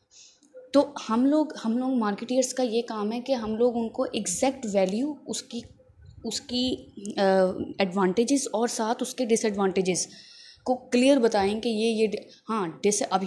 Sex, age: female, 20-39